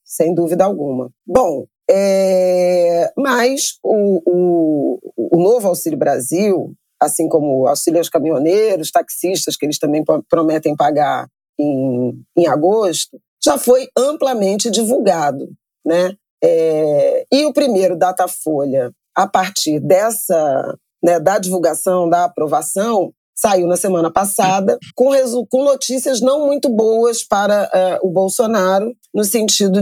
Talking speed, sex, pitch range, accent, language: 115 wpm, female, 175-245 Hz, Brazilian, Portuguese